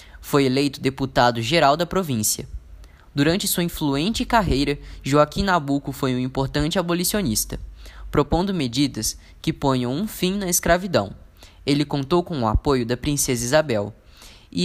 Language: Portuguese